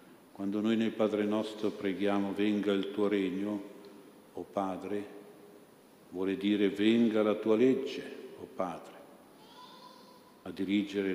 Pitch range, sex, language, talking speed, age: 95-105 Hz, male, Italian, 120 wpm, 50-69